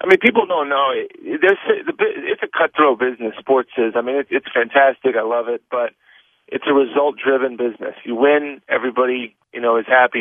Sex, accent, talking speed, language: male, American, 175 wpm, English